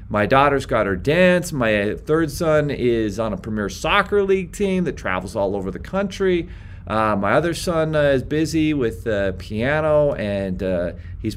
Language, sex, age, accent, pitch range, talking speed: English, male, 40-59, American, 105-155 Hz, 180 wpm